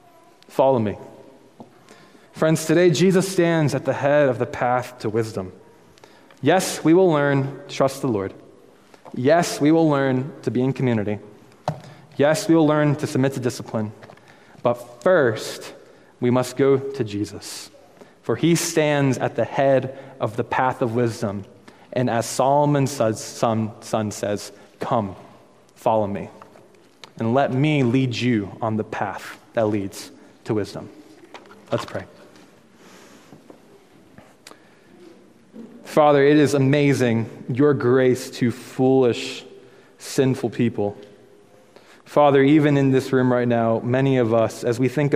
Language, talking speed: English, 135 wpm